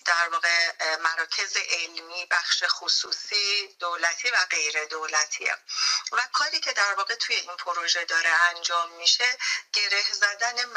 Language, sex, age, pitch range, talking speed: Persian, female, 40-59, 170-210 Hz, 130 wpm